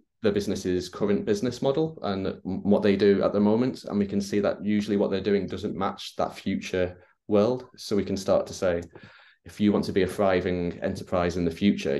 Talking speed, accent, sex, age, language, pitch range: 215 wpm, British, male, 20-39, English, 90-105 Hz